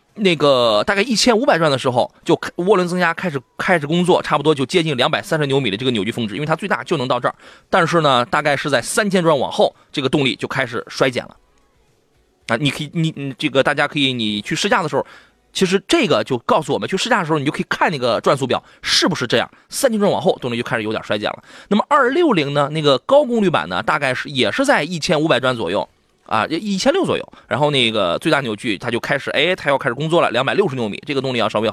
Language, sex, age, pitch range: Chinese, male, 20-39, 135-190 Hz